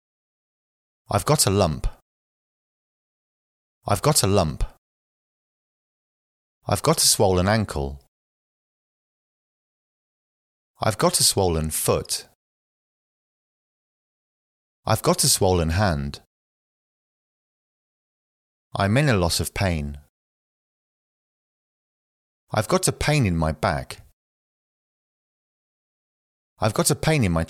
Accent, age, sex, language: British, 30-49, male, English